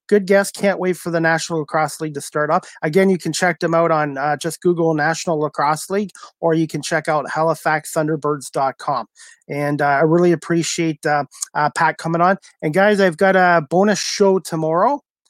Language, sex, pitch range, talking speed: English, male, 155-185 Hz, 190 wpm